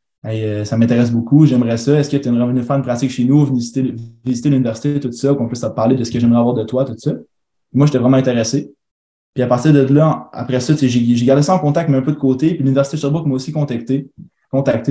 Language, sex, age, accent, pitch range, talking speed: French, male, 20-39, Canadian, 120-140 Hz, 260 wpm